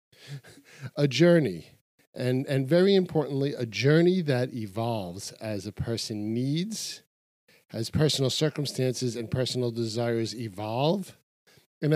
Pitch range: 115-145 Hz